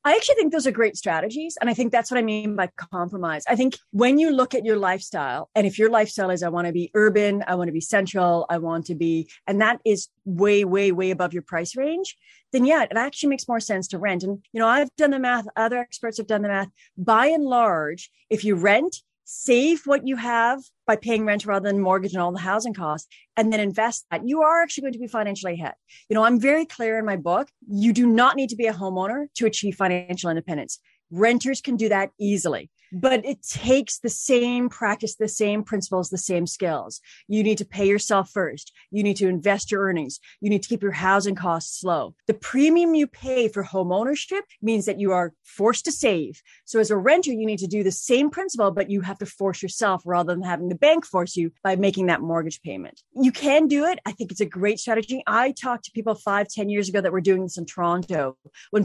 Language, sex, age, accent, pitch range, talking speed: English, female, 30-49, American, 185-245 Hz, 240 wpm